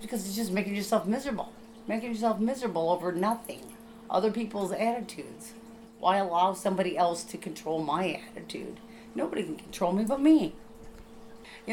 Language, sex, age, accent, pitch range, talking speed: English, female, 40-59, American, 170-225 Hz, 150 wpm